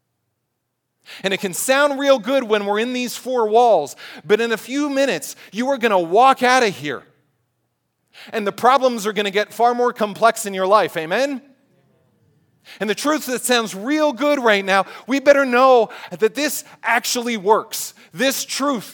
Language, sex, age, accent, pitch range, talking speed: English, male, 40-59, American, 190-245 Hz, 180 wpm